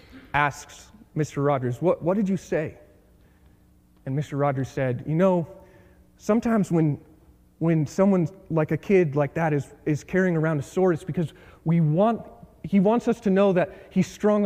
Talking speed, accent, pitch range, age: 170 wpm, American, 140-195 Hz, 30-49